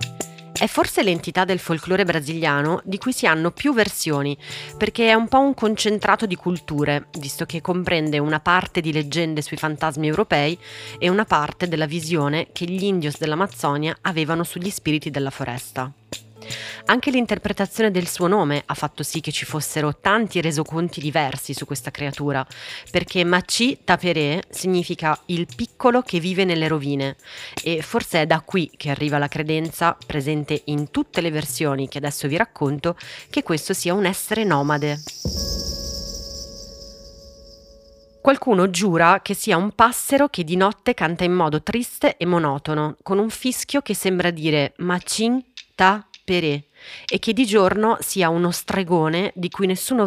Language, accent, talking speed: Italian, native, 155 wpm